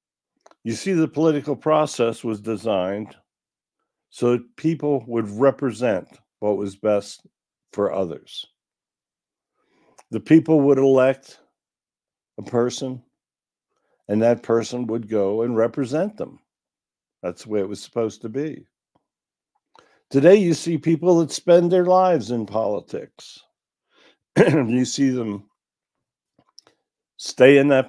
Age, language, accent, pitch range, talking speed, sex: 60-79, English, American, 105-145 Hz, 120 wpm, male